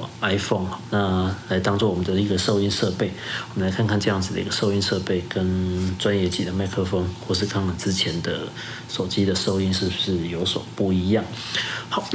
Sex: male